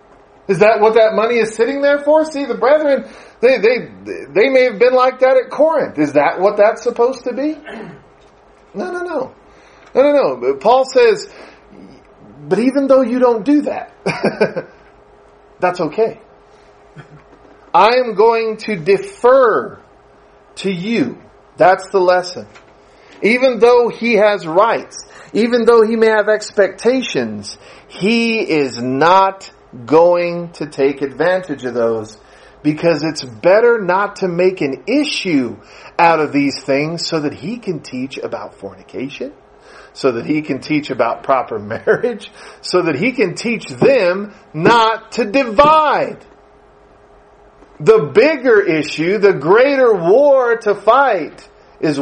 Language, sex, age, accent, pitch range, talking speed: English, male, 40-59, American, 155-250 Hz, 140 wpm